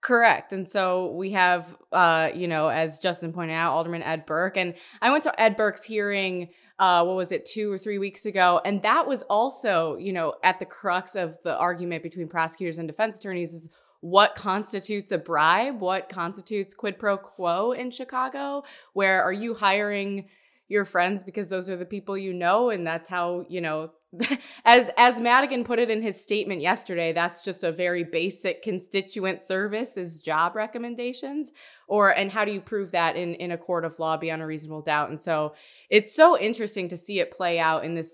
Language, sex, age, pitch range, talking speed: English, female, 20-39, 165-205 Hz, 200 wpm